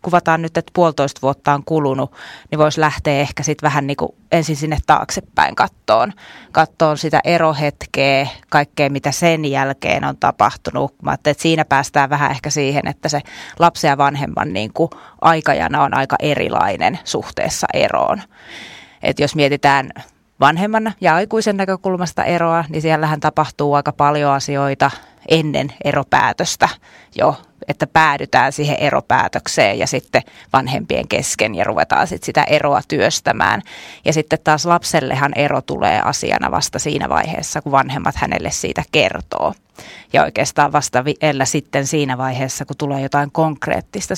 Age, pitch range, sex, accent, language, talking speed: 30-49, 140-160 Hz, female, native, Finnish, 140 wpm